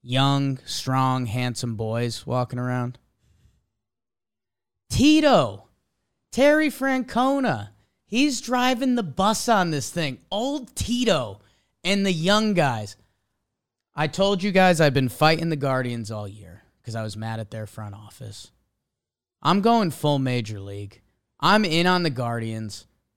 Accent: American